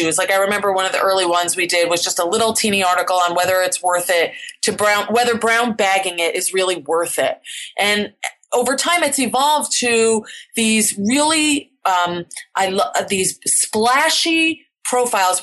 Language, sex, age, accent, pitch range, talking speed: English, female, 30-49, American, 175-235 Hz, 180 wpm